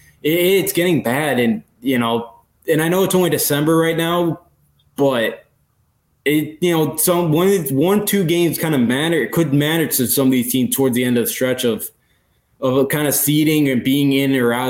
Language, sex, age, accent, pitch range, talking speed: English, male, 20-39, American, 125-150 Hz, 205 wpm